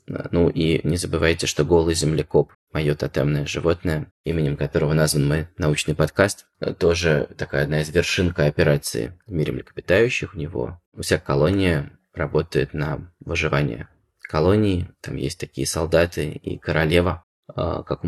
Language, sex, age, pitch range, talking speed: Russian, male, 20-39, 75-95 Hz, 135 wpm